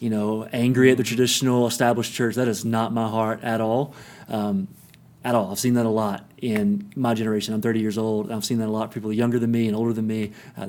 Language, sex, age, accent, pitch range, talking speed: English, male, 30-49, American, 110-130 Hz, 245 wpm